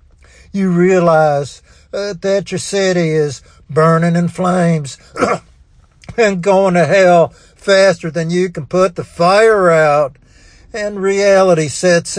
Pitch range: 140-170 Hz